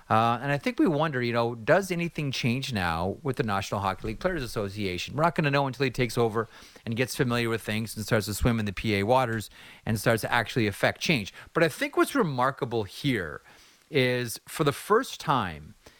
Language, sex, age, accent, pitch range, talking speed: English, male, 30-49, American, 110-150 Hz, 220 wpm